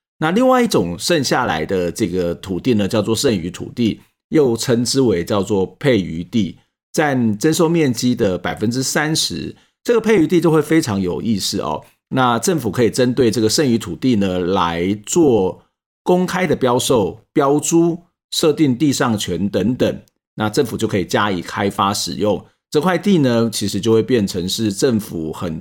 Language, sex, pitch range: Chinese, male, 105-155 Hz